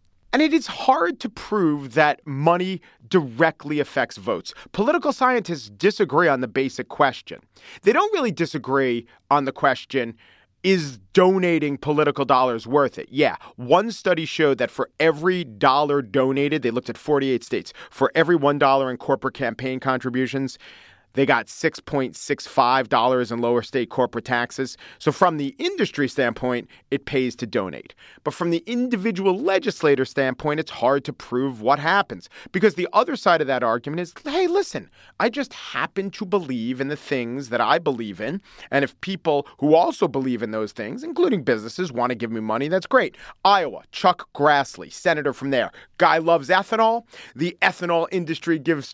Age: 40-59